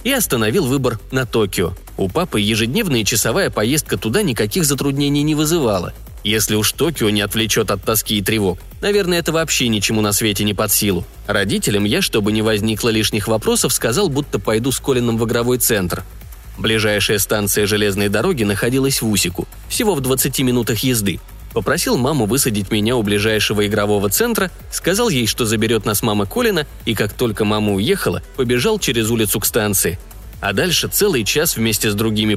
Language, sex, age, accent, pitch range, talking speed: Russian, male, 20-39, native, 105-135 Hz, 170 wpm